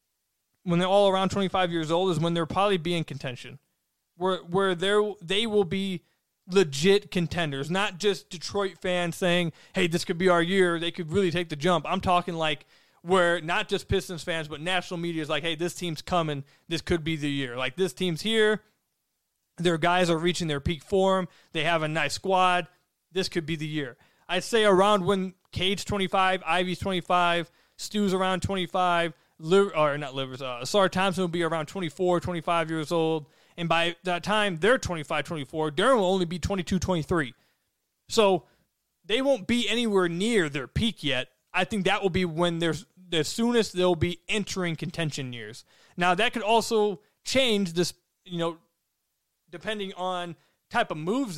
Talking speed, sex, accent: 185 wpm, male, American